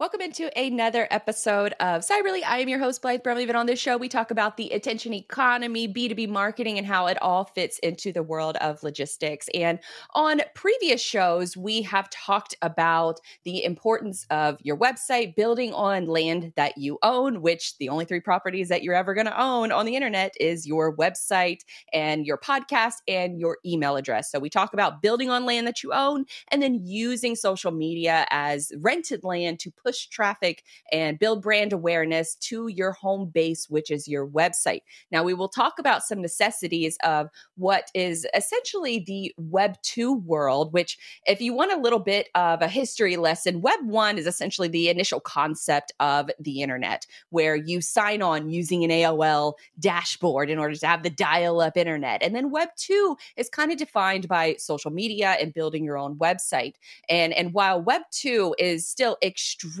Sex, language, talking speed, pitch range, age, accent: female, English, 190 wpm, 165-235 Hz, 20-39, American